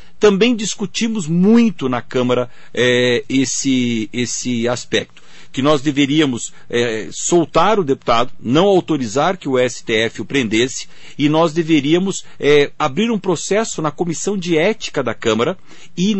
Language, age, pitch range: Portuguese, 50-69, 135-195 Hz